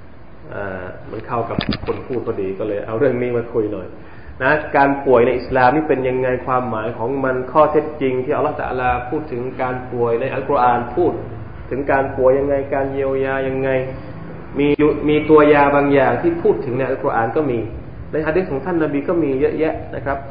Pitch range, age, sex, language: 120-145 Hz, 20-39, male, Thai